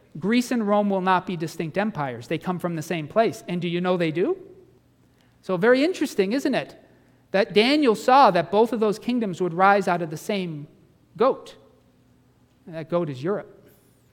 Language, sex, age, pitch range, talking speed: English, male, 40-59, 160-210 Hz, 190 wpm